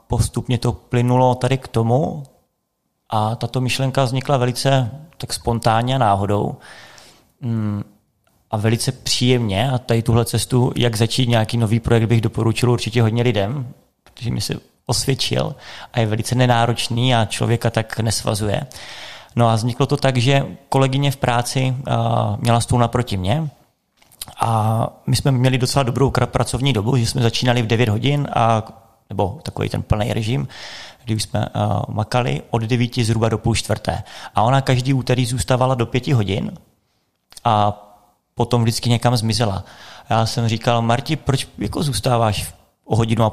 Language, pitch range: Czech, 110-125 Hz